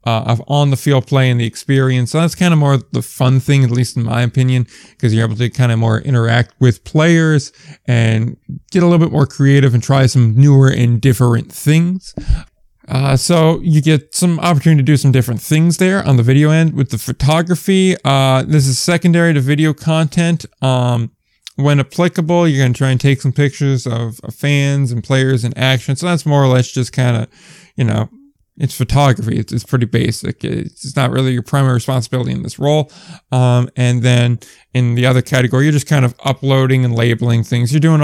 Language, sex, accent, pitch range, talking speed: English, male, American, 120-145 Hz, 205 wpm